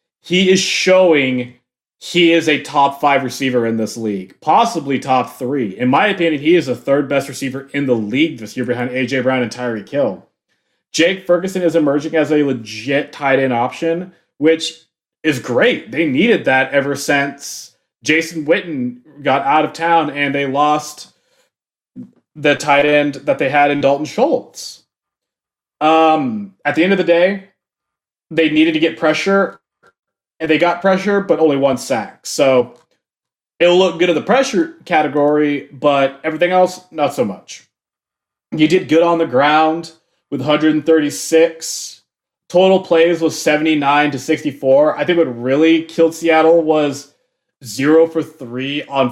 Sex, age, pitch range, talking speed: male, 20-39, 140-165 Hz, 155 wpm